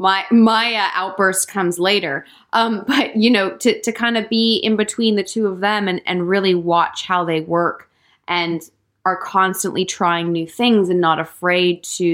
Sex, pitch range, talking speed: female, 165-200 Hz, 190 wpm